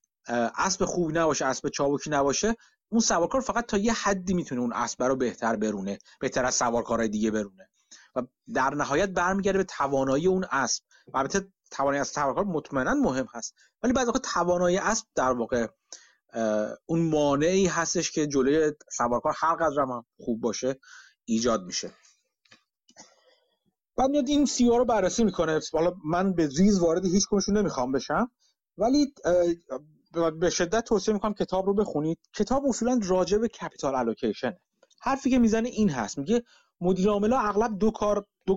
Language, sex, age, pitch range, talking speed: Persian, male, 30-49, 130-205 Hz, 155 wpm